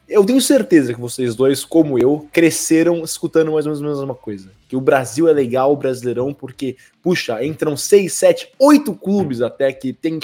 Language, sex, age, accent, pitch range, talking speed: Portuguese, male, 20-39, Brazilian, 115-150 Hz, 190 wpm